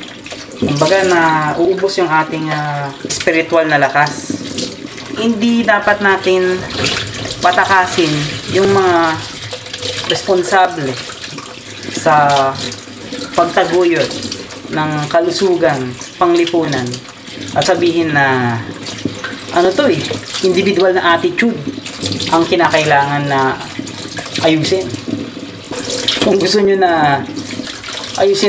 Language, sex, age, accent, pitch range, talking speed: Filipino, female, 20-39, native, 135-175 Hz, 80 wpm